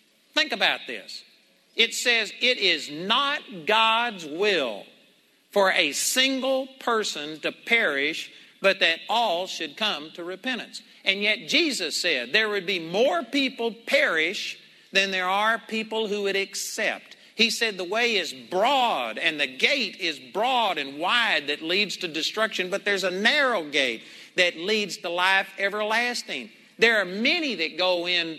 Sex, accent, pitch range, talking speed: male, American, 170-230 Hz, 155 wpm